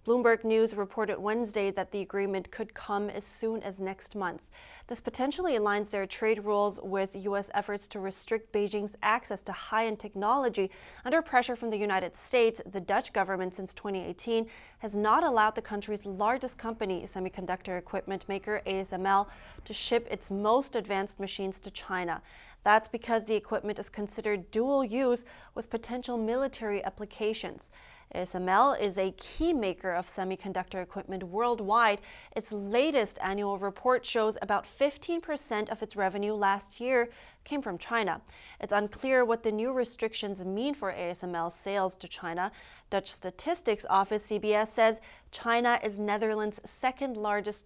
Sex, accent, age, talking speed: female, American, 30-49, 145 wpm